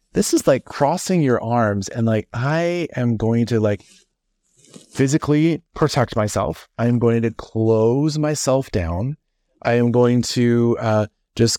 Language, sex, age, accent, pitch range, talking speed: English, male, 30-49, American, 105-130 Hz, 145 wpm